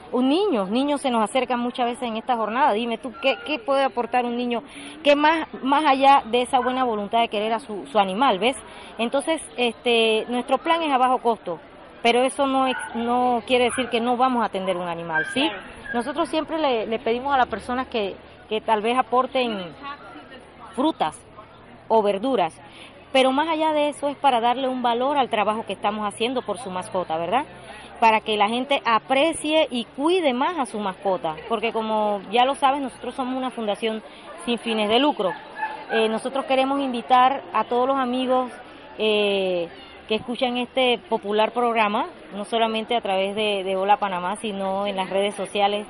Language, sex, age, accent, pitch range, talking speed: Spanish, female, 30-49, American, 210-265 Hz, 185 wpm